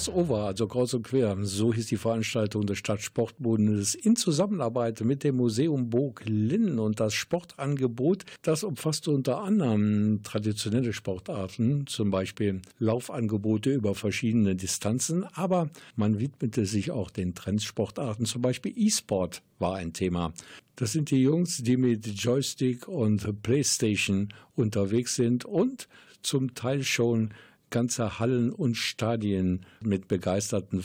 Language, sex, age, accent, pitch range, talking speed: German, male, 50-69, German, 105-135 Hz, 130 wpm